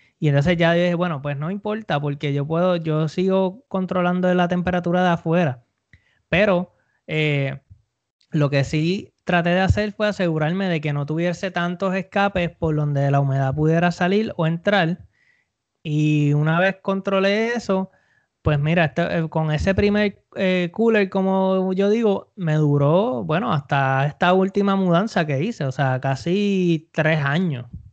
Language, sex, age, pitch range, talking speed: English, male, 20-39, 145-185 Hz, 155 wpm